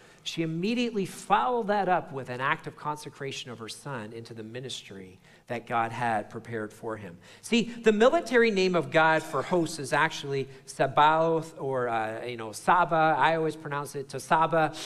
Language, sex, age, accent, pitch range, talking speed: English, male, 40-59, American, 135-195 Hz, 180 wpm